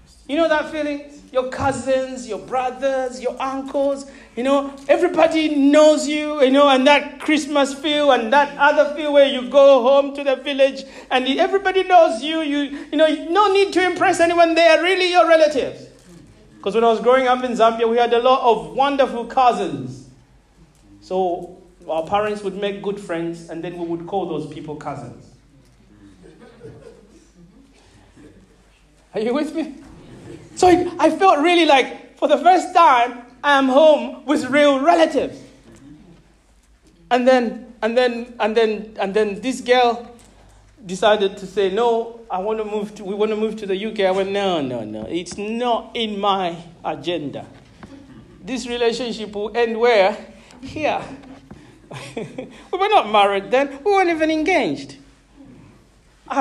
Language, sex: English, male